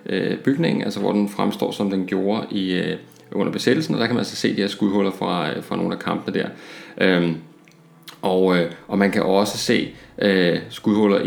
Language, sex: Danish, male